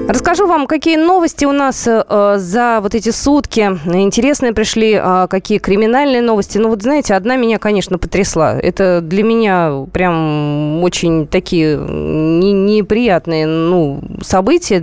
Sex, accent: female, native